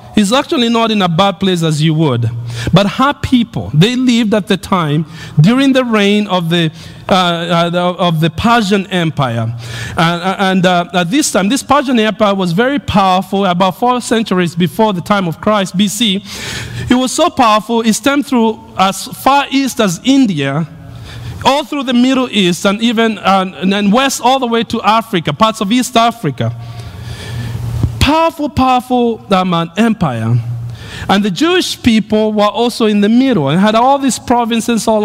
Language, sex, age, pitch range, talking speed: English, male, 50-69, 160-240 Hz, 175 wpm